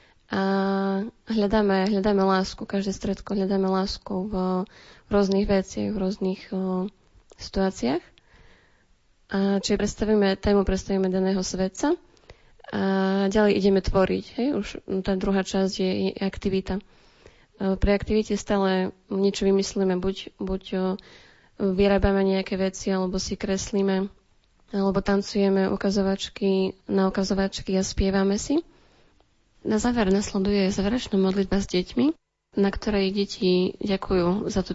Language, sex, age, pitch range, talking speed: Slovak, female, 20-39, 190-200 Hz, 110 wpm